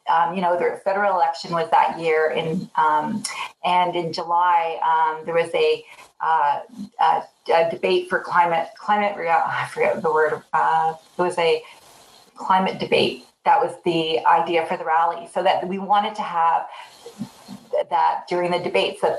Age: 40-59